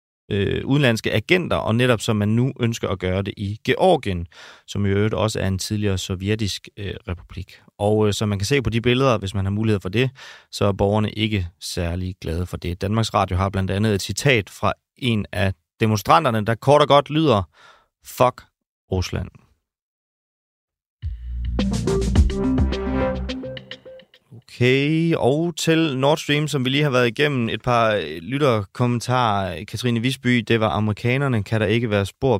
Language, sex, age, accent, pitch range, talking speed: Danish, male, 30-49, native, 100-125 Hz, 160 wpm